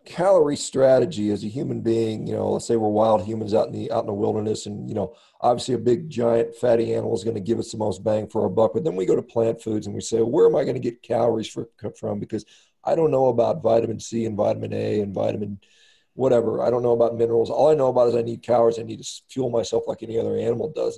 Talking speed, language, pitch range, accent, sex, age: 275 wpm, English, 115-145 Hz, American, male, 40-59